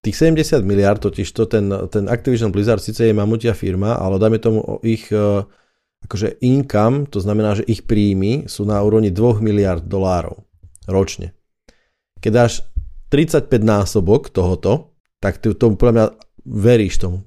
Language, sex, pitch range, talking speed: Slovak, male, 95-115 Hz, 150 wpm